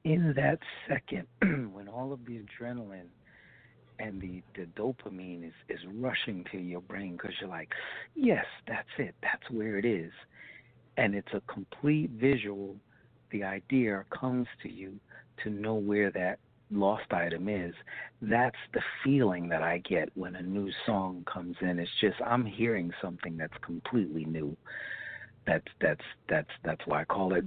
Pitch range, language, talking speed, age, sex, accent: 90-120 Hz, English, 160 wpm, 60-79, male, American